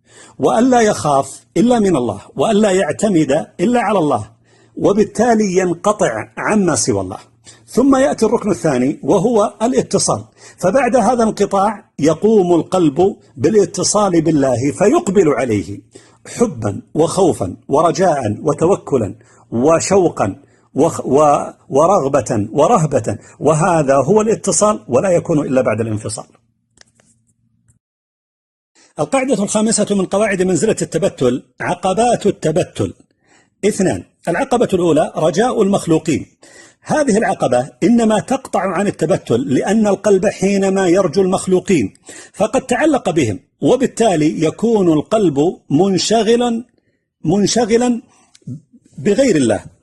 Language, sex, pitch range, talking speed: Arabic, male, 160-220 Hz, 95 wpm